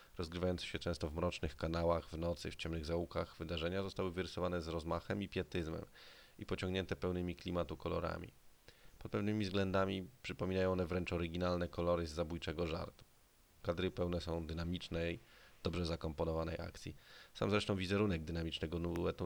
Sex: male